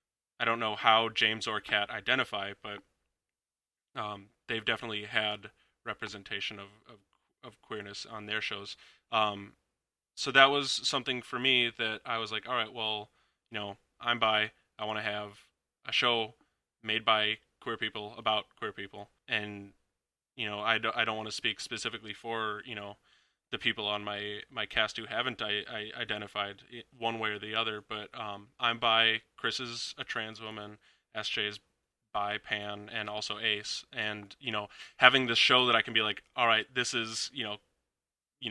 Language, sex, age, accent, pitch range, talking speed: English, male, 10-29, American, 105-115 Hz, 180 wpm